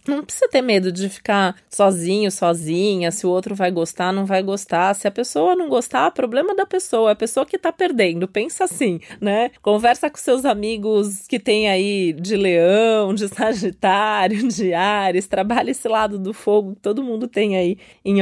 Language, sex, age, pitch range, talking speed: Portuguese, female, 20-39, 200-270 Hz, 185 wpm